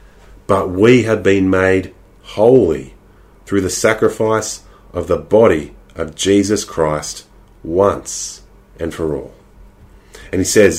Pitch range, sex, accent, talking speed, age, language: 90-110 Hz, male, Australian, 120 wpm, 30-49, English